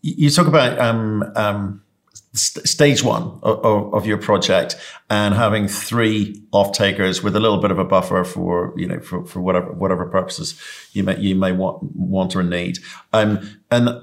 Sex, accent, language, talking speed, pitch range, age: male, British, English, 180 wpm, 95-115 Hz, 50-69